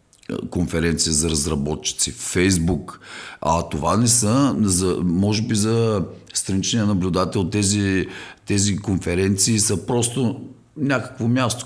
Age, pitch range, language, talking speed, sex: 50-69, 85-120 Hz, Bulgarian, 115 wpm, male